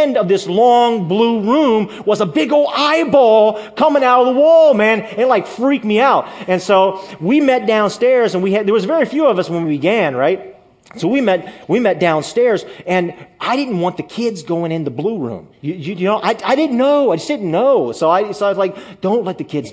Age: 30-49